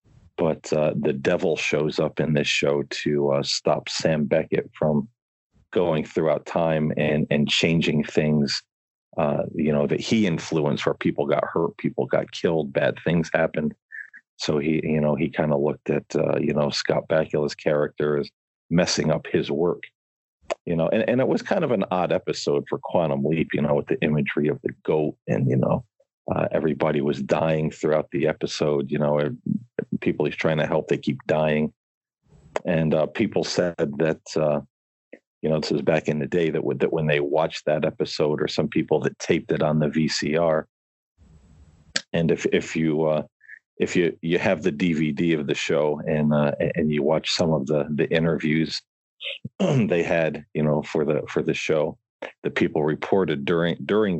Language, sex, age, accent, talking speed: English, male, 40-59, American, 185 wpm